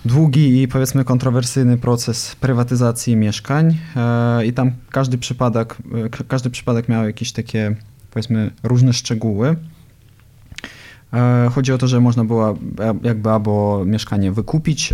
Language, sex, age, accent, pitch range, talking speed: Polish, male, 20-39, native, 110-130 Hz, 115 wpm